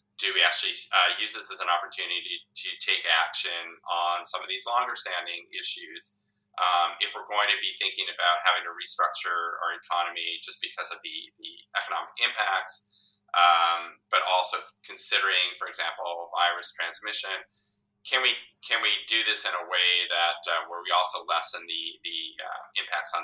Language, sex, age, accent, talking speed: English, male, 30-49, American, 175 wpm